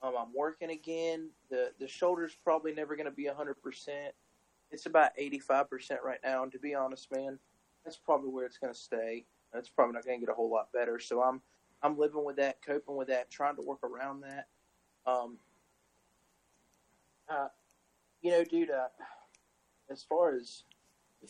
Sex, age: male, 30-49